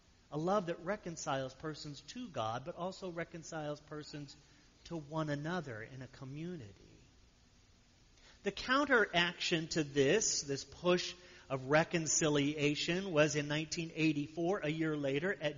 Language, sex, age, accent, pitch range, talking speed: English, male, 40-59, American, 140-185 Hz, 125 wpm